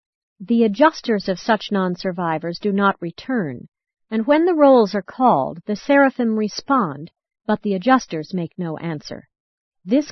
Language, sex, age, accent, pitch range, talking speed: English, female, 50-69, American, 175-230 Hz, 140 wpm